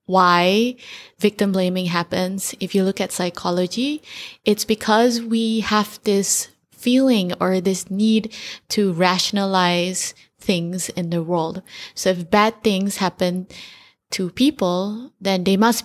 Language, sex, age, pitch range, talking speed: English, female, 20-39, 180-210 Hz, 130 wpm